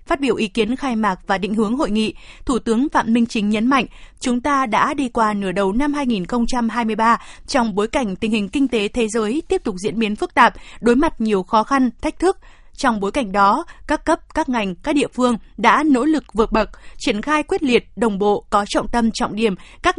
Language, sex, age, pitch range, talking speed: Vietnamese, female, 20-39, 215-270 Hz, 230 wpm